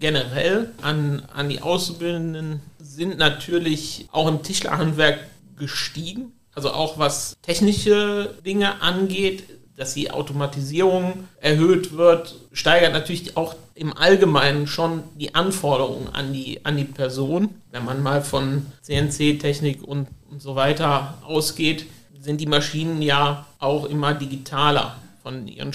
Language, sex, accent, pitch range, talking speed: German, male, German, 140-165 Hz, 120 wpm